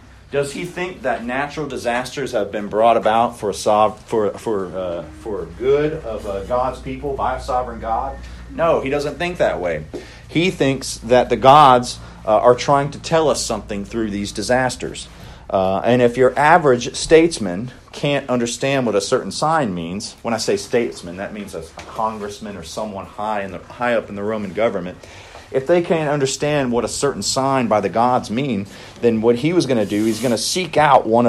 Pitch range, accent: 105-140 Hz, American